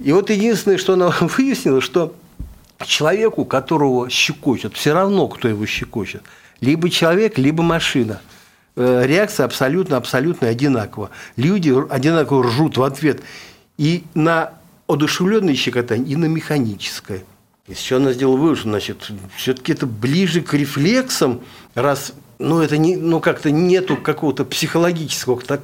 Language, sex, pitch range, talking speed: Russian, male, 125-185 Hz, 130 wpm